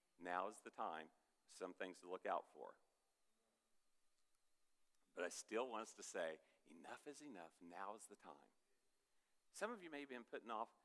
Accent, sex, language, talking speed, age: American, male, English, 175 wpm, 50-69